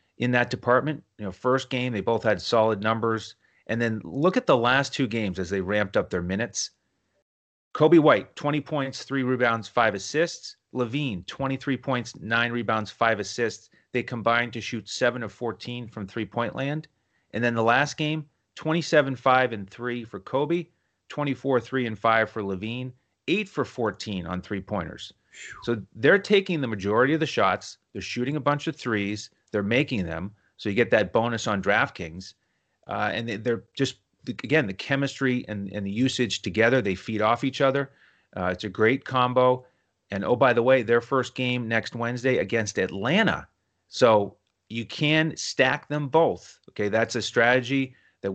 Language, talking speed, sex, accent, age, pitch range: English, 180 wpm, male, American, 30-49, 100-130 Hz